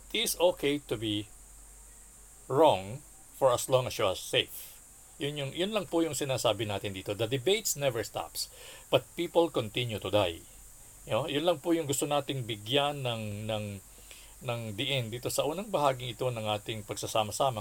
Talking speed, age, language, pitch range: 175 wpm, 50-69, Filipino, 105-145 Hz